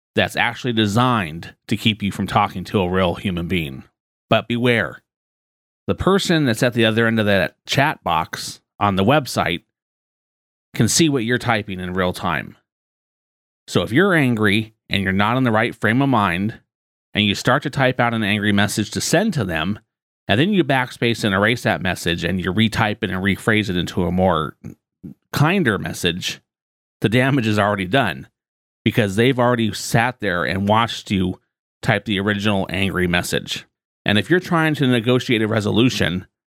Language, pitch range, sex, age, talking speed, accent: English, 95-120 Hz, male, 30-49, 180 wpm, American